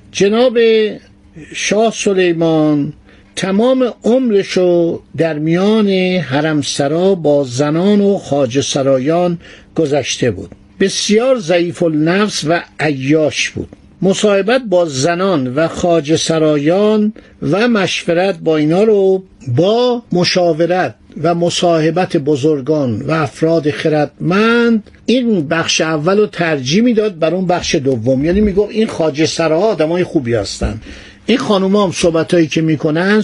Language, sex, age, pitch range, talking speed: Persian, male, 60-79, 150-195 Hz, 115 wpm